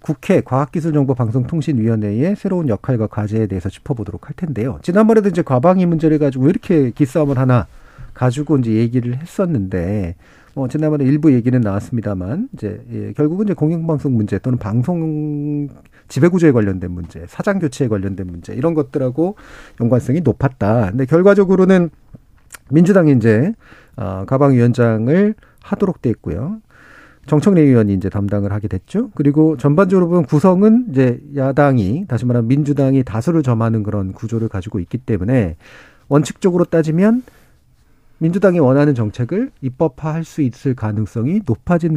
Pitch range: 115-165 Hz